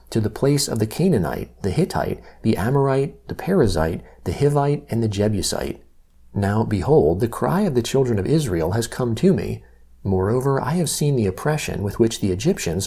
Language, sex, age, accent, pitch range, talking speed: English, male, 40-59, American, 95-130 Hz, 185 wpm